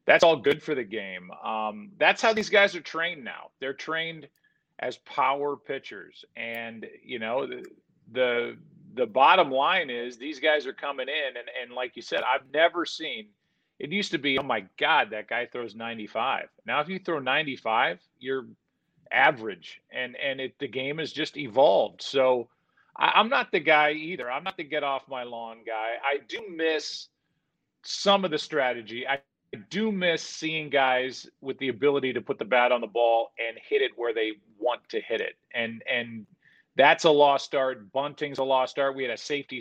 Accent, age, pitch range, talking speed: American, 40-59, 120-165 Hz, 190 wpm